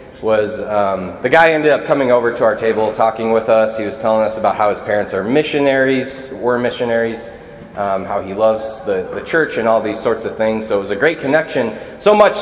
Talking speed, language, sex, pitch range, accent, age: 225 wpm, English, male, 115-160 Hz, American, 20-39